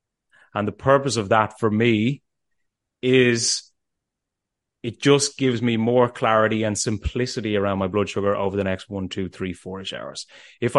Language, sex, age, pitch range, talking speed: English, male, 30-49, 100-125 Hz, 160 wpm